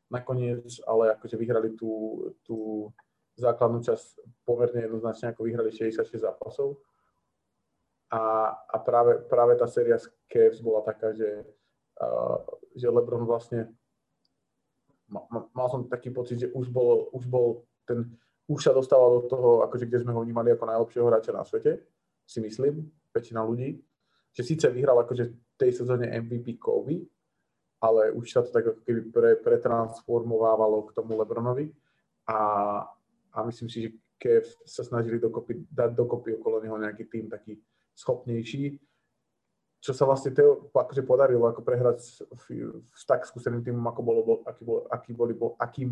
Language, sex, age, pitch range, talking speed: Slovak, male, 20-39, 115-140 Hz, 140 wpm